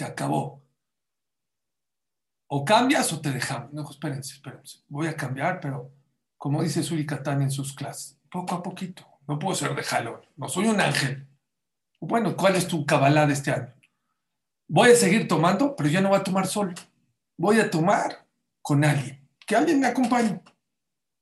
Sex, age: male, 50-69